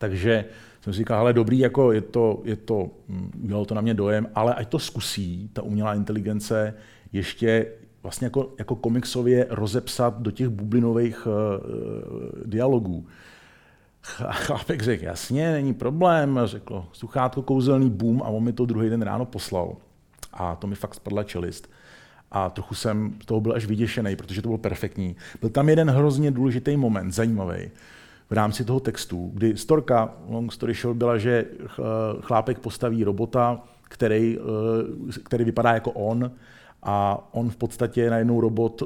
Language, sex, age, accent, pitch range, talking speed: Czech, male, 40-59, native, 105-120 Hz, 155 wpm